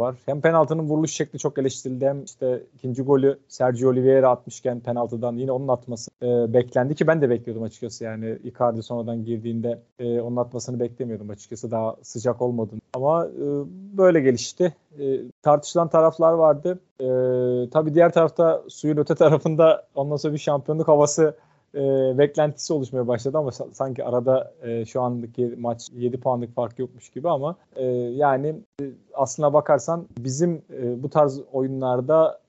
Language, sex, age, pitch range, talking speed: Turkish, male, 40-59, 125-155 Hz, 155 wpm